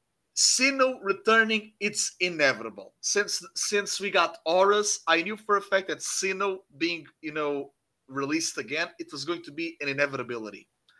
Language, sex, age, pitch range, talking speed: English, male, 30-49, 170-210 Hz, 155 wpm